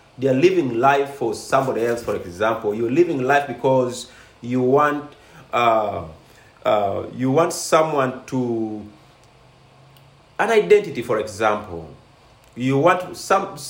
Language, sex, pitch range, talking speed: English, male, 115-155 Hz, 125 wpm